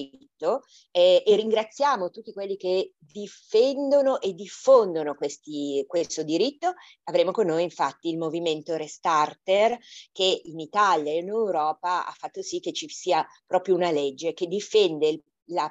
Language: Italian